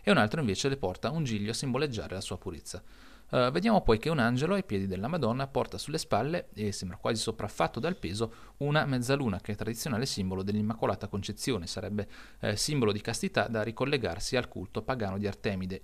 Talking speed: 200 wpm